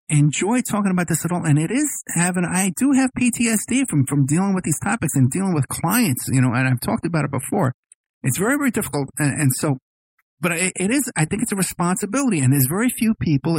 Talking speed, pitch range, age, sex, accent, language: 225 wpm, 130-180 Hz, 50-69, male, American, English